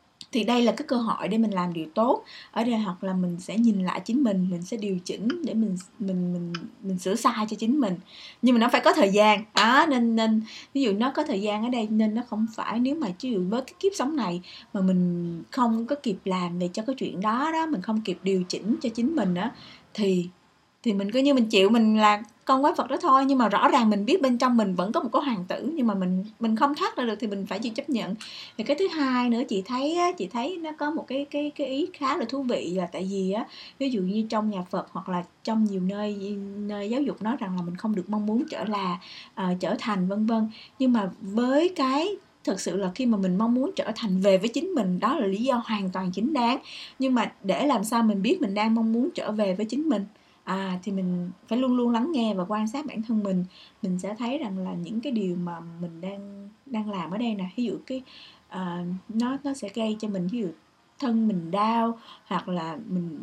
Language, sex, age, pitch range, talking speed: Vietnamese, female, 20-39, 190-255 Hz, 260 wpm